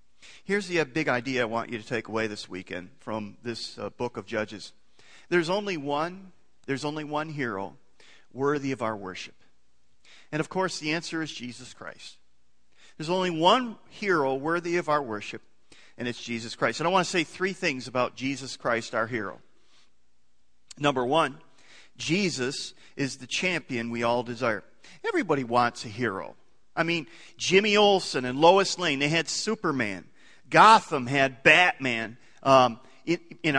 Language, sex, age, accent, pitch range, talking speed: English, male, 40-59, American, 115-165 Hz, 160 wpm